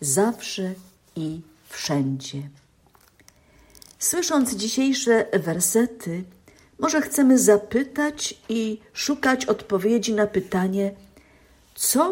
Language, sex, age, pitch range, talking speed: Polish, female, 50-69, 170-220 Hz, 75 wpm